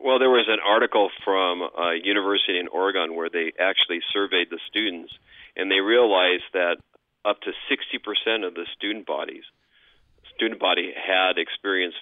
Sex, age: male, 40-59